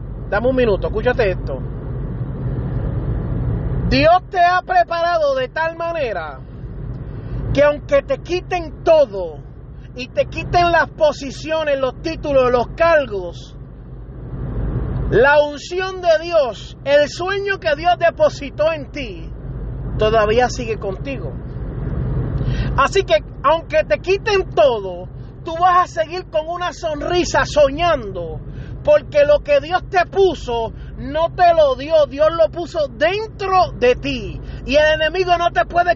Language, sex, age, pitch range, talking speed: Spanish, male, 30-49, 265-345 Hz, 125 wpm